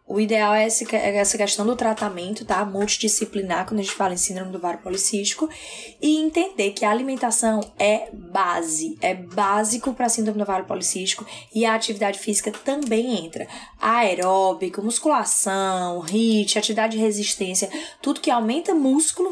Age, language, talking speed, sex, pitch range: 10-29, Portuguese, 150 wpm, female, 200-250 Hz